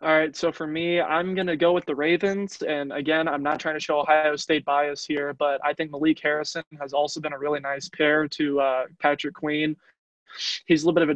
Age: 20-39